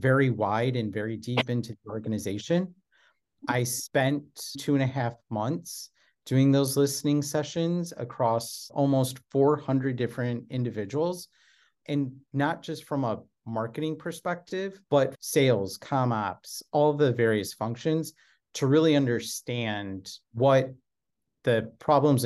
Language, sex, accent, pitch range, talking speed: English, male, American, 110-145 Hz, 120 wpm